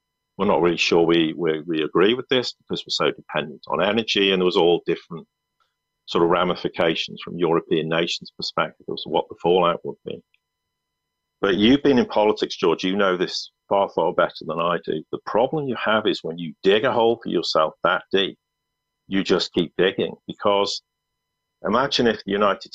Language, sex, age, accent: English, male, 50-69, British